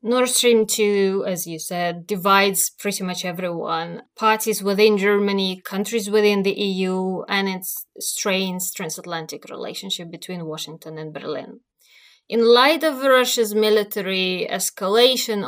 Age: 20-39